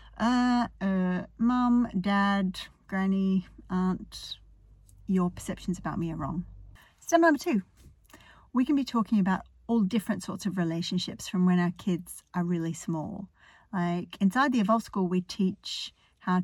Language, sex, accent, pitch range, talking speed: English, female, Australian, 175-210 Hz, 145 wpm